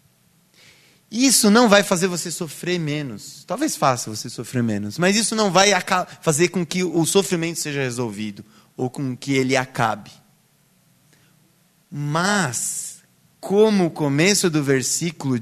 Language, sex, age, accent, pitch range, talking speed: Portuguese, male, 20-39, Brazilian, 120-170 Hz, 130 wpm